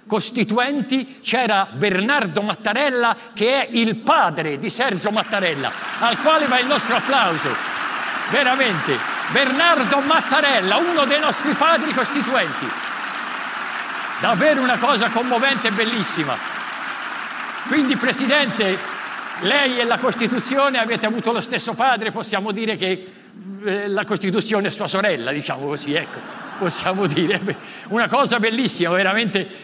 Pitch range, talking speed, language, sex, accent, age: 175-230 Hz, 120 wpm, Italian, male, native, 50-69